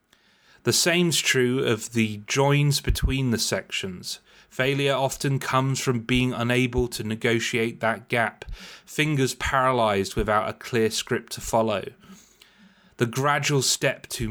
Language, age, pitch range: English, 30-49, 110-135 Hz